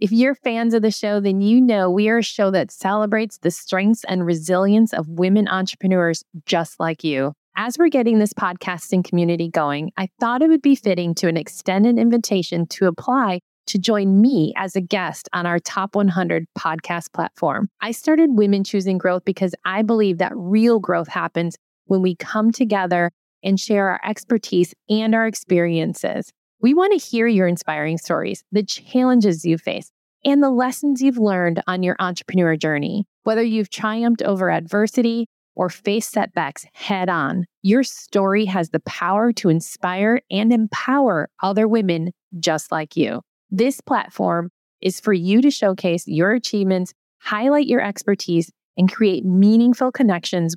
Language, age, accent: English, 30-49, American